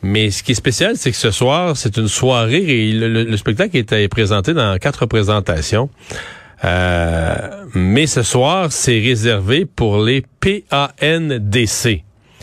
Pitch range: 105-130 Hz